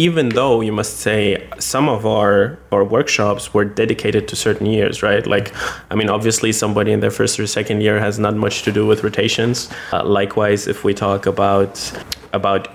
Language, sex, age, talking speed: Hungarian, male, 20-39, 195 wpm